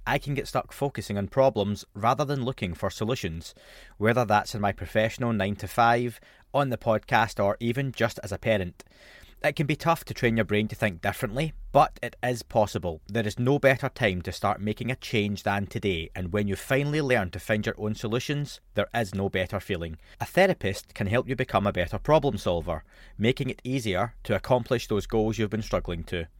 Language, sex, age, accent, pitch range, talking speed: English, male, 30-49, British, 95-125 Hz, 210 wpm